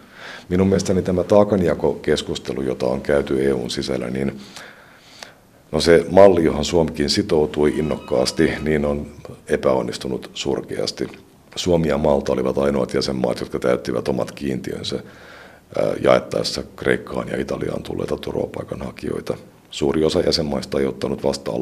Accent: native